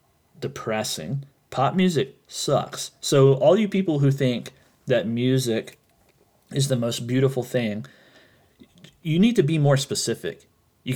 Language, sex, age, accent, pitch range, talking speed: English, male, 30-49, American, 110-140 Hz, 130 wpm